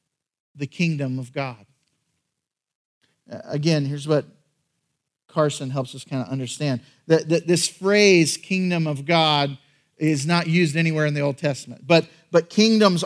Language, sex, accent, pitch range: English, male, American, 150-180 Hz